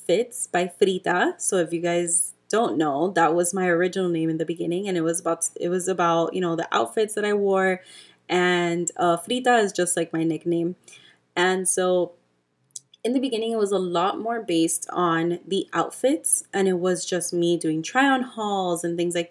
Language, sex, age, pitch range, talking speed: English, female, 20-39, 175-215 Hz, 200 wpm